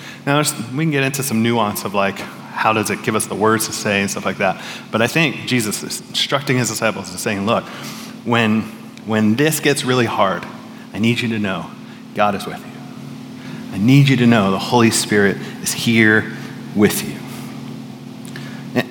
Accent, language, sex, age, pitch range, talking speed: American, English, male, 30-49, 115-145 Hz, 195 wpm